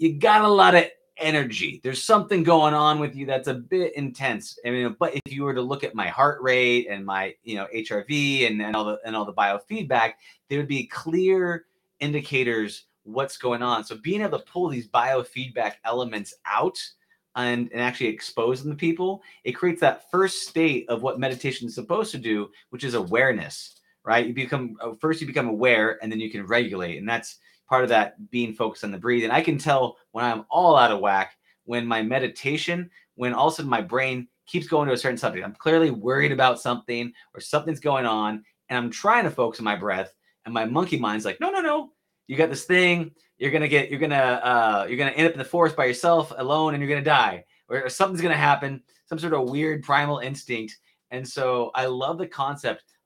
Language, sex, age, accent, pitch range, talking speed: English, male, 30-49, American, 120-160 Hz, 215 wpm